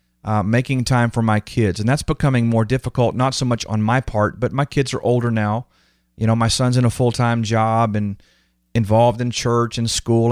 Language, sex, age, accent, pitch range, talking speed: English, male, 40-59, American, 105-125 Hz, 220 wpm